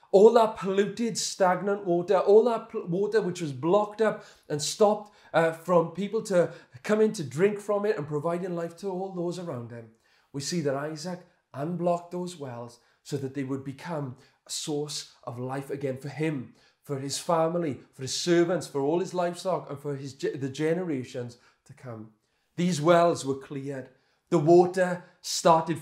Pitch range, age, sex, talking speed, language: 135-175 Hz, 30-49, male, 170 wpm, English